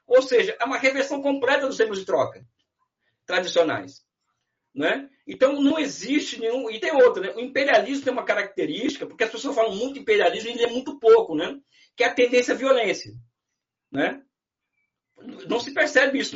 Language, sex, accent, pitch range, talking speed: Portuguese, male, Brazilian, 190-280 Hz, 175 wpm